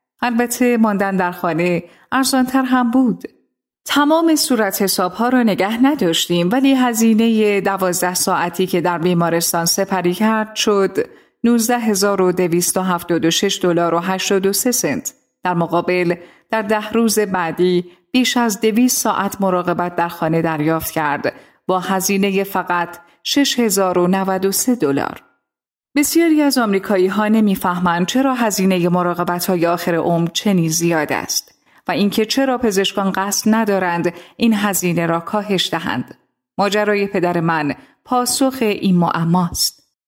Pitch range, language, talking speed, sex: 175-225 Hz, Persian, 120 wpm, female